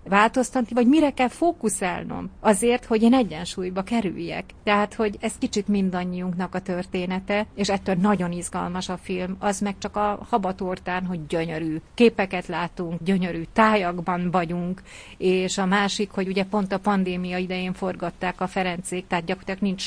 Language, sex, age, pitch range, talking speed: Hungarian, female, 30-49, 185-220 Hz, 150 wpm